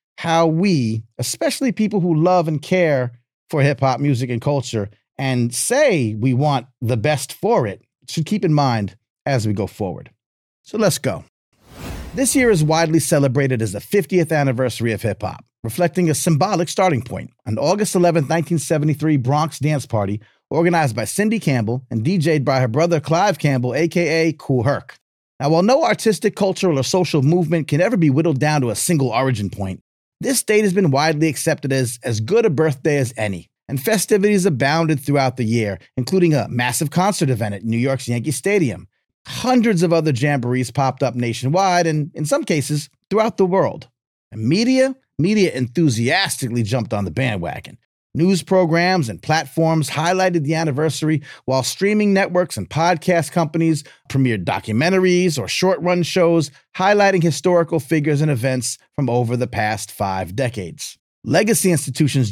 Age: 30-49